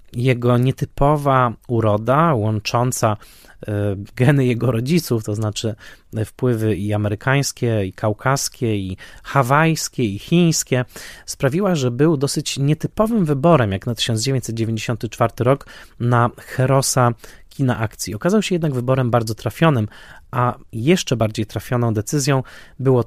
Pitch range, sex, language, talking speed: 110-135 Hz, male, Polish, 115 wpm